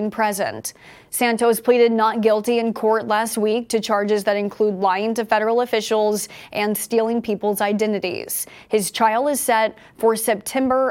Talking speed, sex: 150 wpm, female